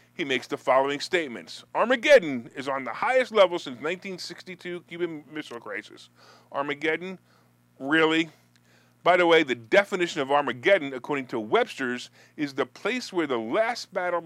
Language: English